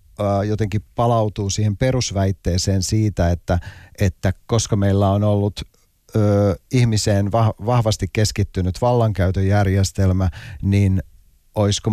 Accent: native